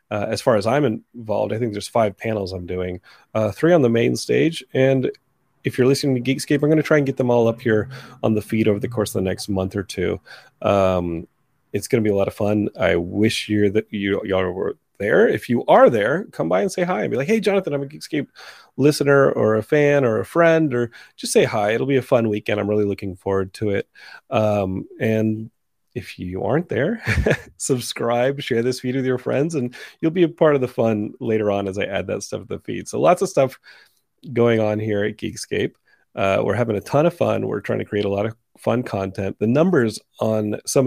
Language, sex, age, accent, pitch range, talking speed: English, male, 30-49, American, 105-135 Hz, 240 wpm